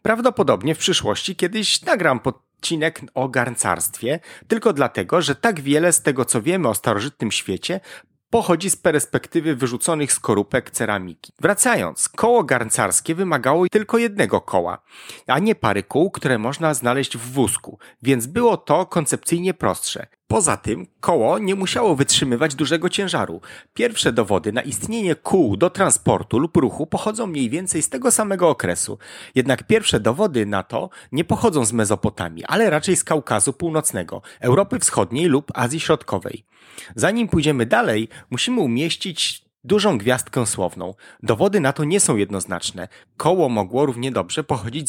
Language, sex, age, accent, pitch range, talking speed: Polish, male, 30-49, native, 120-180 Hz, 145 wpm